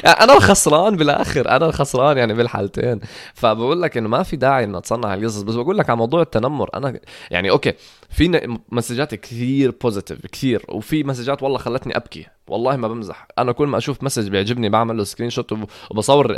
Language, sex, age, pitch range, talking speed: English, male, 20-39, 105-140 Hz, 180 wpm